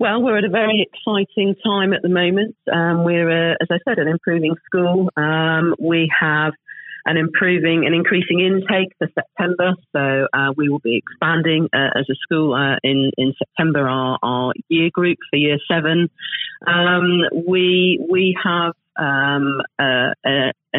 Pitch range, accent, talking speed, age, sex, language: 140-175 Hz, British, 165 wpm, 40-59, female, English